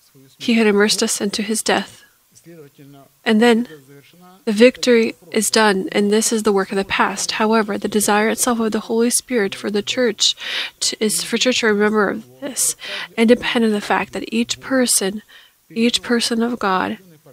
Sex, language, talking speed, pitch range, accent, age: female, English, 175 wpm, 185-230 Hz, American, 20-39